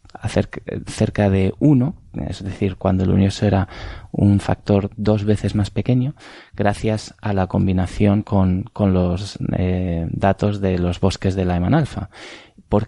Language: Spanish